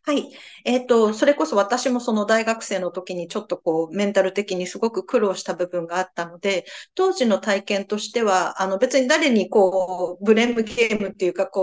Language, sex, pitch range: Japanese, female, 185-255 Hz